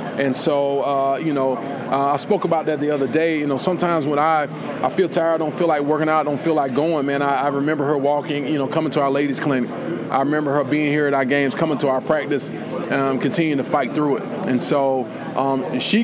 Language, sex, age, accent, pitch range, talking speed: English, male, 20-39, American, 140-160 Hz, 250 wpm